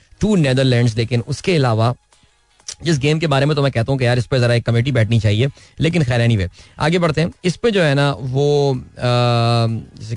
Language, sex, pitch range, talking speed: Hindi, male, 120-175 Hz, 195 wpm